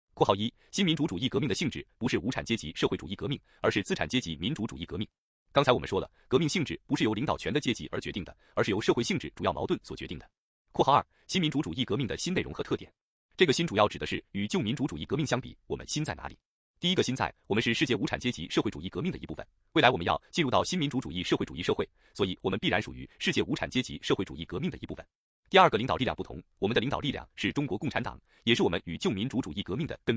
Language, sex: Chinese, male